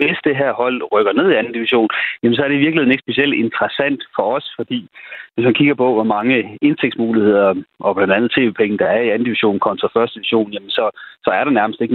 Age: 30-49